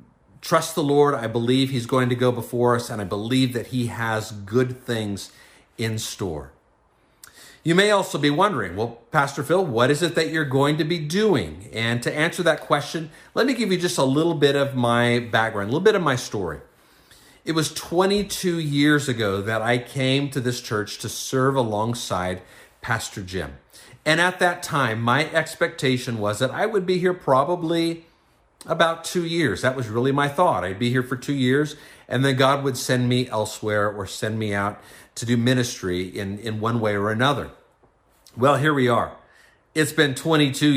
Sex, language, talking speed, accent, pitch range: male, English, 190 wpm, American, 115-155 Hz